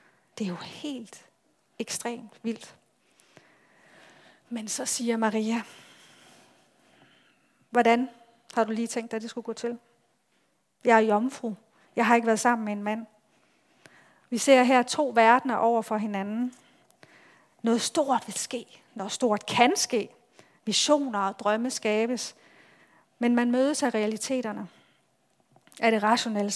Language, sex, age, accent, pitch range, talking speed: Danish, female, 40-59, native, 215-255 Hz, 135 wpm